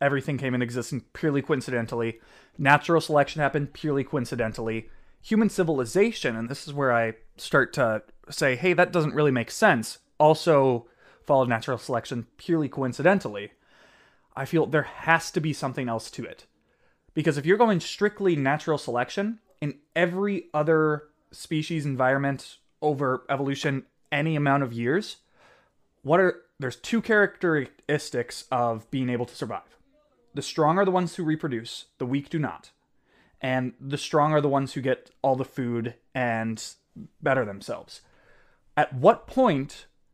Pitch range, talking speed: 130-165 Hz, 150 wpm